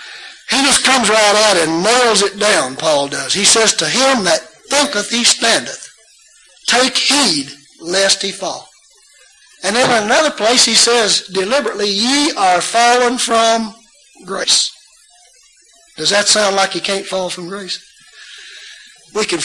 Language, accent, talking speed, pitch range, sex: English, American, 150 wpm, 175-225 Hz, male